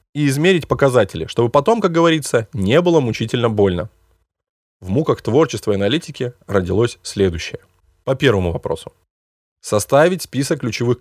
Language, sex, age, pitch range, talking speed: Russian, male, 20-39, 100-145 Hz, 130 wpm